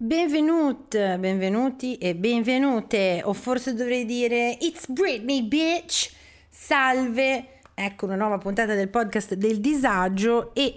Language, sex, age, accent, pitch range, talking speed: Italian, female, 30-49, native, 180-235 Hz, 115 wpm